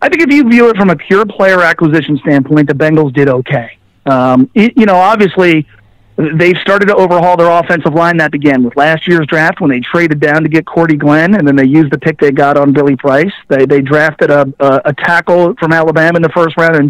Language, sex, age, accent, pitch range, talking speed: English, male, 40-59, American, 155-185 Hz, 240 wpm